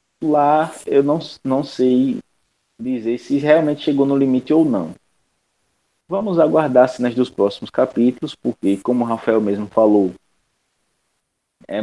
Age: 20-39